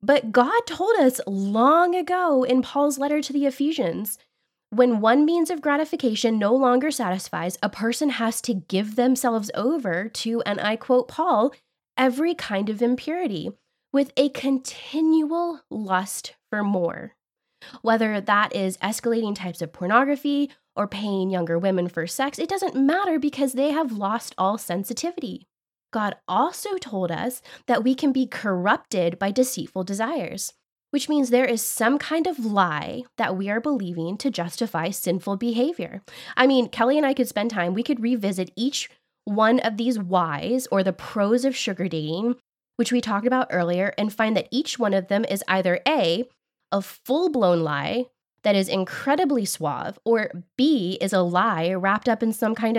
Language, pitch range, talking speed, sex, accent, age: English, 195-275 Hz, 165 wpm, female, American, 10-29